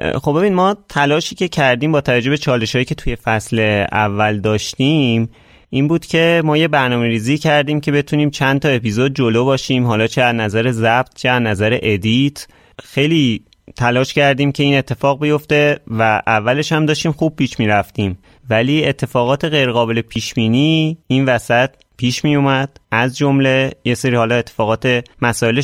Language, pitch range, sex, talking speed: Persian, 115-140 Hz, male, 160 wpm